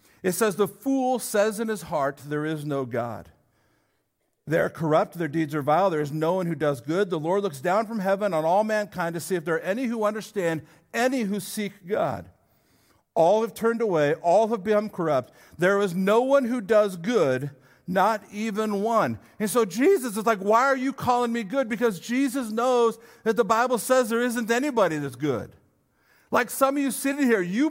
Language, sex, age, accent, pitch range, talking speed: English, male, 50-69, American, 160-240 Hz, 205 wpm